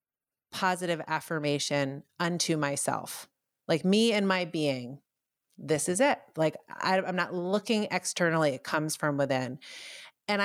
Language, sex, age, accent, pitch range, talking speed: English, female, 30-49, American, 145-175 Hz, 130 wpm